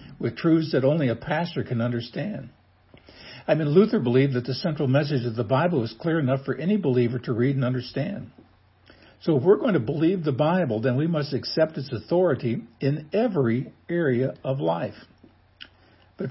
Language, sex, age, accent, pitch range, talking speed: English, male, 60-79, American, 110-155 Hz, 180 wpm